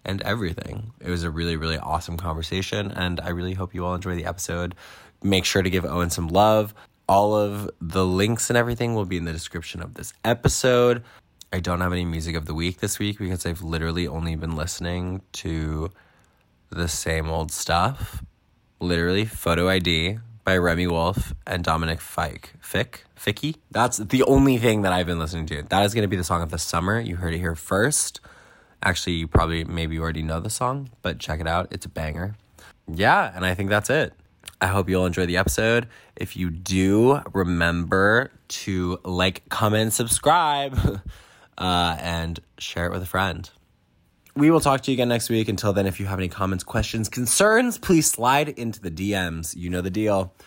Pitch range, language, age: 85-105 Hz, English, 20-39